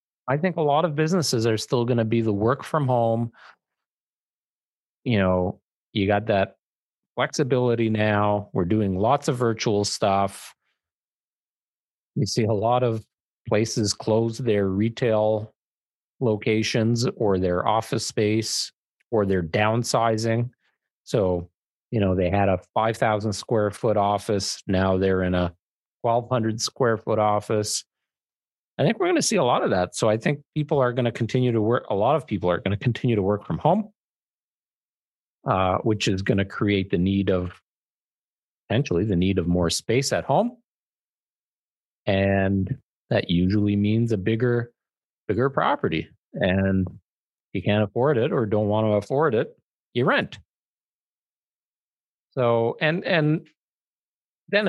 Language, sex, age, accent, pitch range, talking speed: English, male, 40-59, American, 100-125 Hz, 150 wpm